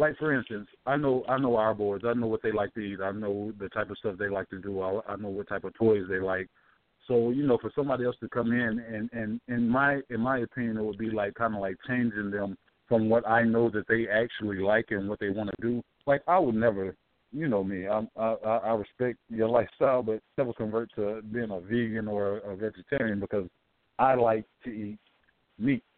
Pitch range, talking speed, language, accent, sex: 100-120 Hz, 240 wpm, English, American, male